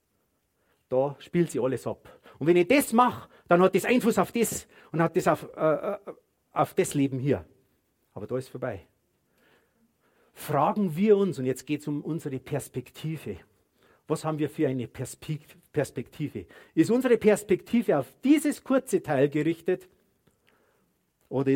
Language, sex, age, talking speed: German, male, 50-69, 155 wpm